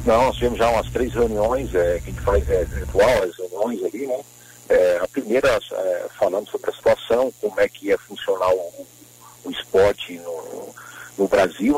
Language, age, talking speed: Portuguese, 50-69, 195 wpm